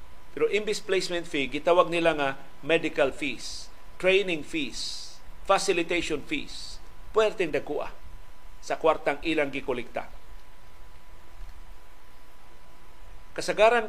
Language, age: Filipino, 40-59